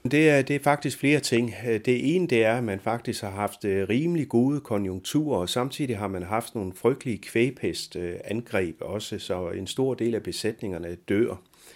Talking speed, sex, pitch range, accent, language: 180 wpm, male, 105-135 Hz, native, Danish